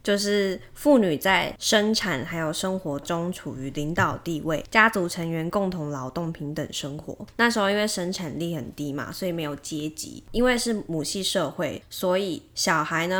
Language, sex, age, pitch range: Chinese, female, 20-39, 155-200 Hz